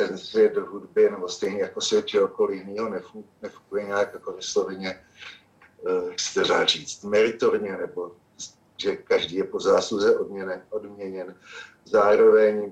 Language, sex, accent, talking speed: Czech, male, native, 125 wpm